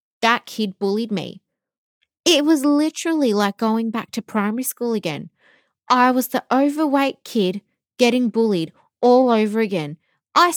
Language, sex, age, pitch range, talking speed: English, female, 20-39, 205-275 Hz, 140 wpm